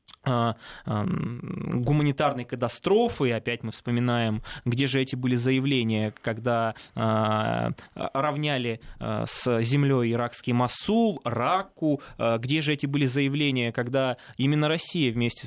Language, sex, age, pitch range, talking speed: Russian, male, 20-39, 115-140 Hz, 105 wpm